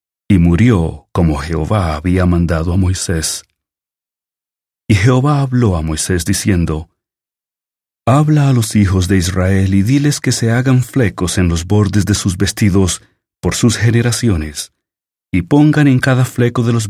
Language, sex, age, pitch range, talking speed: English, male, 40-59, 90-130 Hz, 150 wpm